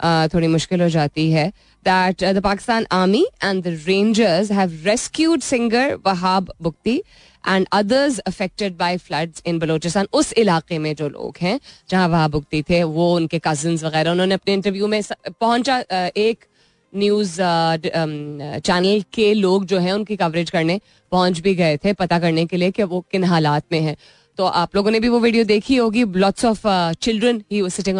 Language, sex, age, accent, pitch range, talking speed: Hindi, female, 20-39, native, 170-210 Hz, 170 wpm